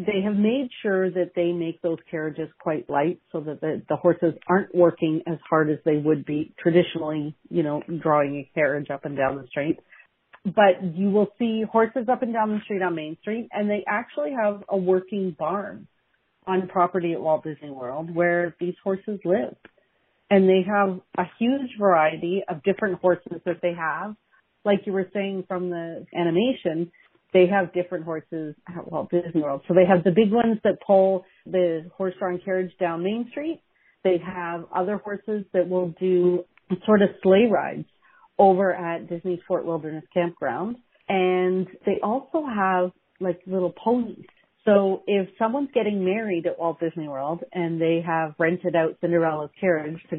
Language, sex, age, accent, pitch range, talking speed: English, female, 40-59, American, 165-200 Hz, 175 wpm